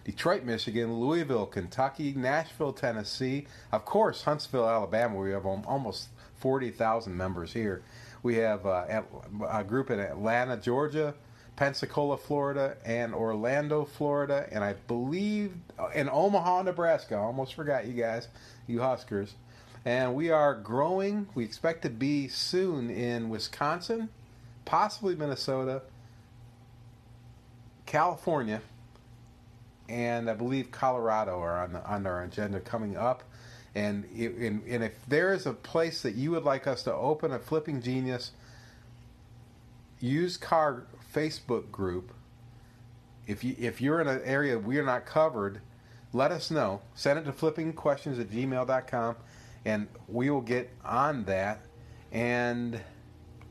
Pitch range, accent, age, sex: 115-140 Hz, American, 40-59, male